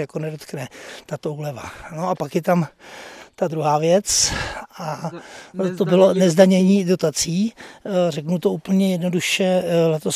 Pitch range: 155-180 Hz